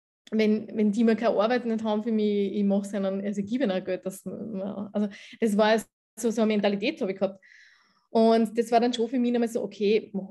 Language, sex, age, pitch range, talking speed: German, female, 20-39, 205-235 Hz, 225 wpm